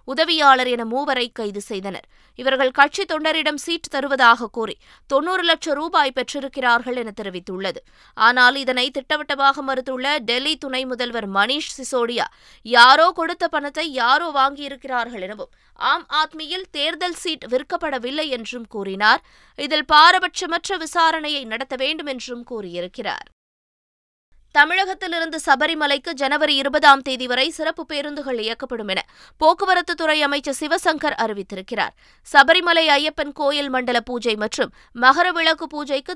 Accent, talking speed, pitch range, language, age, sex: native, 115 wpm, 245-315 Hz, Tamil, 20-39, female